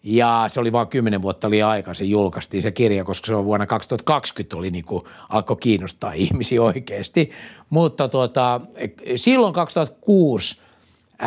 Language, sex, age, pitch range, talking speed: Finnish, male, 60-79, 105-155 Hz, 140 wpm